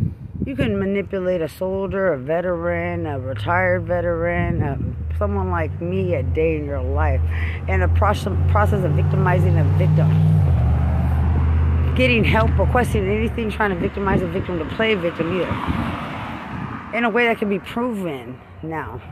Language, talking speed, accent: English, 150 wpm, American